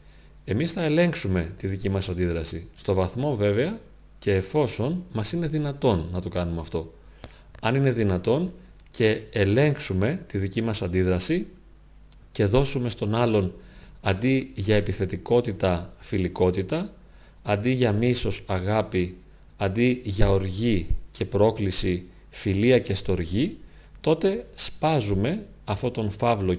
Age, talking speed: 40-59, 120 wpm